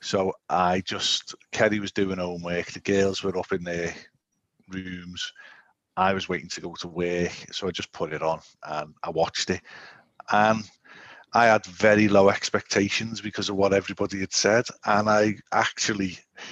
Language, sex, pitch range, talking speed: English, male, 95-110 Hz, 165 wpm